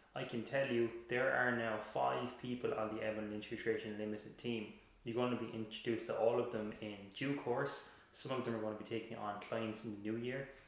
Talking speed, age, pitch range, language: 230 wpm, 20-39, 110-120 Hz, English